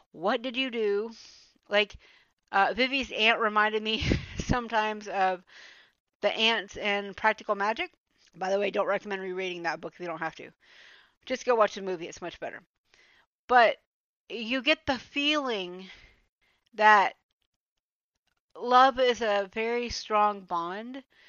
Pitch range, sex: 195-245 Hz, female